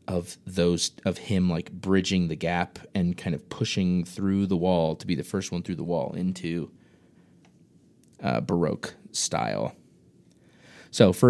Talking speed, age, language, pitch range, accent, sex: 155 wpm, 20-39, English, 85-105 Hz, American, male